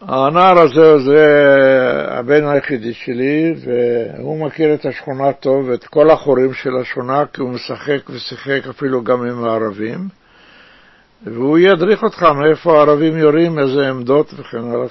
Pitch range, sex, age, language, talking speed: 130-160 Hz, male, 60-79, Hebrew, 135 wpm